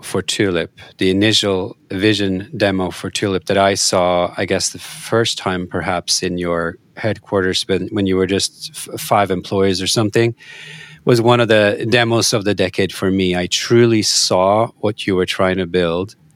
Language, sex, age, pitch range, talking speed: English, male, 40-59, 95-120 Hz, 170 wpm